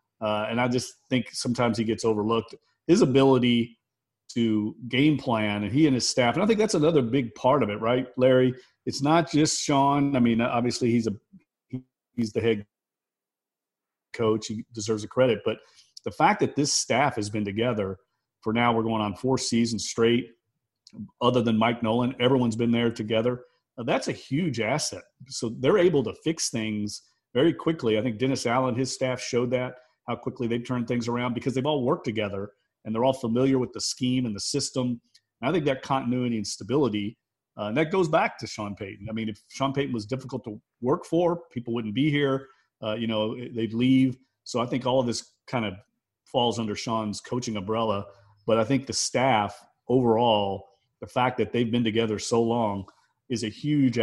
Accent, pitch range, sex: American, 110-130 Hz, male